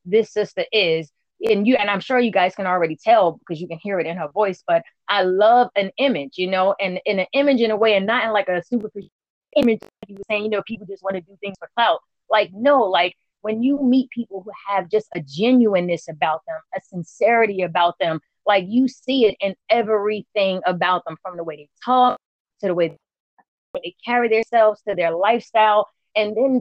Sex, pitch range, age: female, 180-230 Hz, 30-49